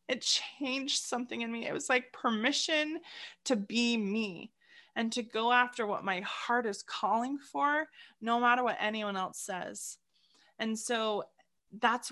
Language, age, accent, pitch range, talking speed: English, 20-39, American, 190-235 Hz, 155 wpm